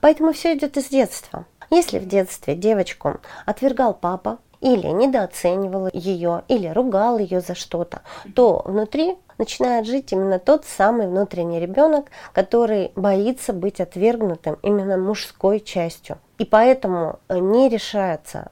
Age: 30-49